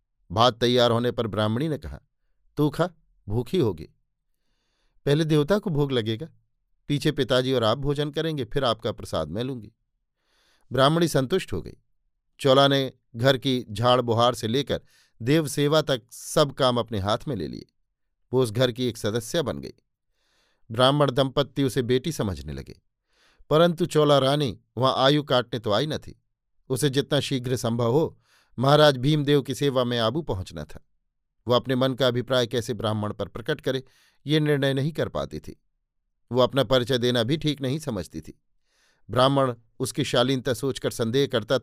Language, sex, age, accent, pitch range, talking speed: Hindi, male, 50-69, native, 115-140 Hz, 165 wpm